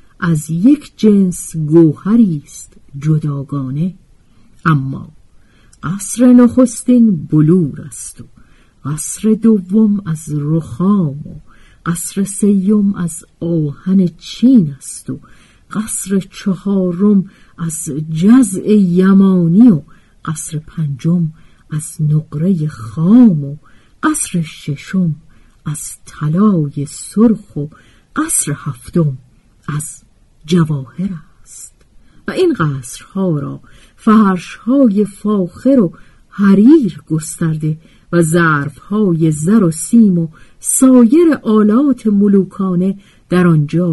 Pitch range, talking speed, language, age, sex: 150-205 Hz, 85 wpm, Persian, 50-69, female